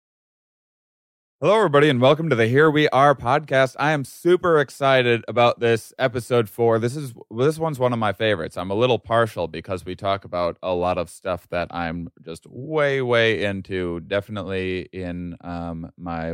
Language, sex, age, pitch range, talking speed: English, male, 20-39, 85-110 Hz, 175 wpm